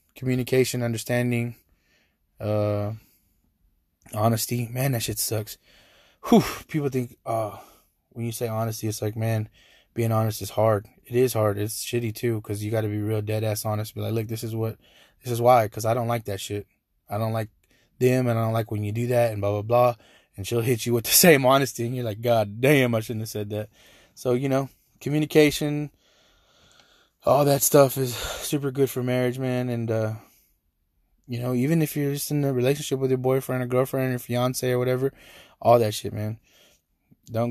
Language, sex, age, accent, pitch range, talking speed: English, male, 20-39, American, 110-125 Hz, 200 wpm